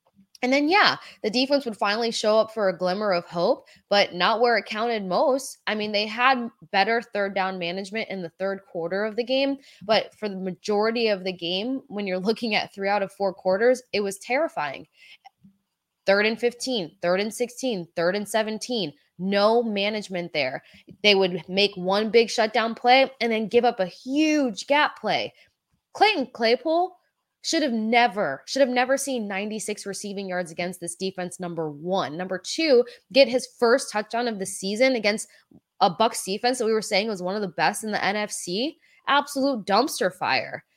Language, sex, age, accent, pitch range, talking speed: English, female, 20-39, American, 190-245 Hz, 185 wpm